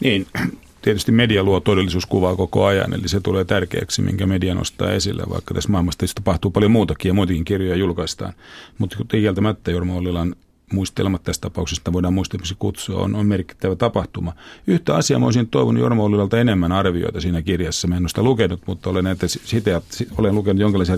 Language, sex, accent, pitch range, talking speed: Finnish, male, native, 85-105 Hz, 185 wpm